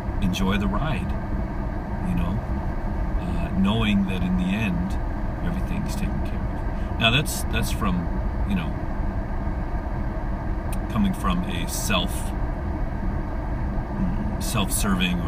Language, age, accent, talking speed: English, 40-59, American, 100 wpm